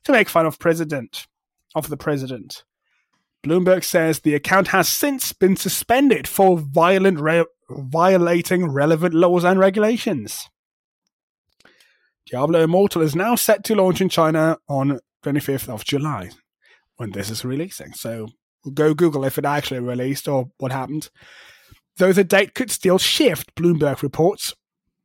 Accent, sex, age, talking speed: British, male, 30-49, 140 wpm